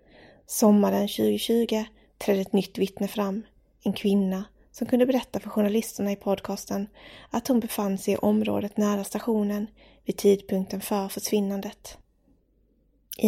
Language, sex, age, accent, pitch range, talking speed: English, female, 20-39, Swedish, 200-220 Hz, 130 wpm